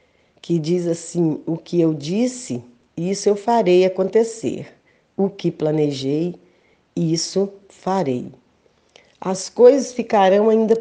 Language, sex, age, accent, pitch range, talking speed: Portuguese, female, 40-59, Brazilian, 165-210 Hz, 110 wpm